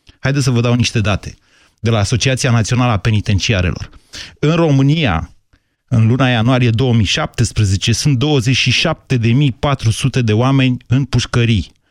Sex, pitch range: male, 115-145 Hz